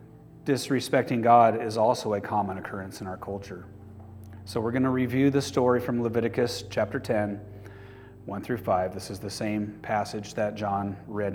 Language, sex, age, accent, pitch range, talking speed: English, male, 30-49, American, 105-140 Hz, 170 wpm